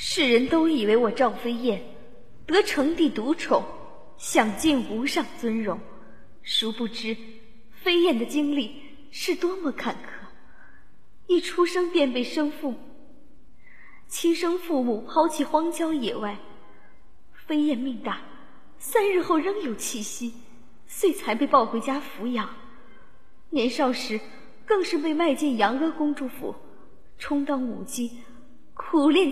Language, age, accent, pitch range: Chinese, 20-39, native, 235-305 Hz